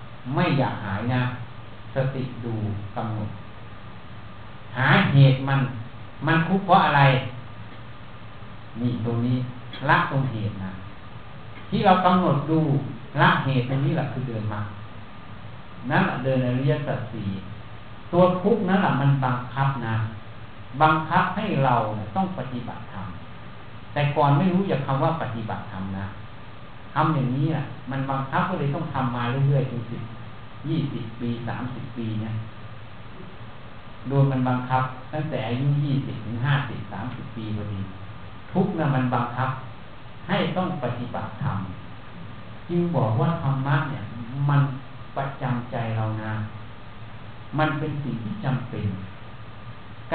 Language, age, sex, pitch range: Thai, 60-79, male, 110-140 Hz